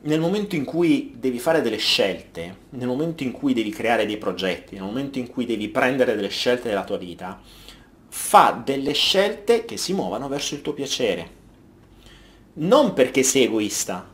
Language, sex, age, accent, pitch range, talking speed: Italian, male, 30-49, native, 105-165 Hz, 175 wpm